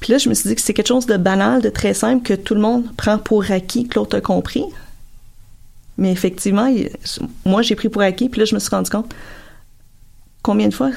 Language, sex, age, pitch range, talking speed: French, female, 30-49, 170-220 Hz, 240 wpm